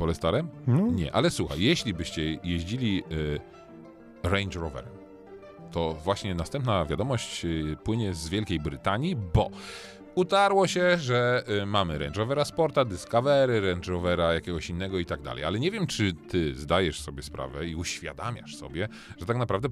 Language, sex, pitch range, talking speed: Polish, male, 80-115 Hz, 150 wpm